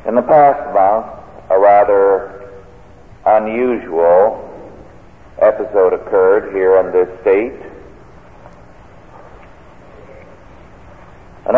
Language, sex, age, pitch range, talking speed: English, male, 50-69, 95-135 Hz, 75 wpm